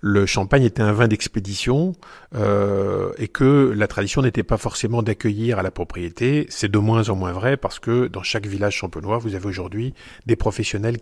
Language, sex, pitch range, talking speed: French, male, 105-130 Hz, 190 wpm